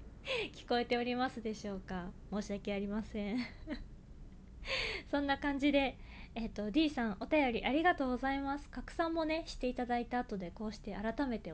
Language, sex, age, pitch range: Japanese, female, 20-39, 210-270 Hz